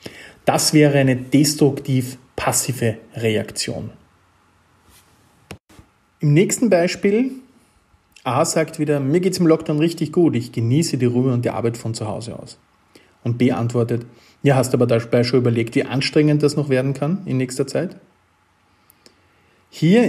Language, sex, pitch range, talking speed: German, male, 120-155 Hz, 145 wpm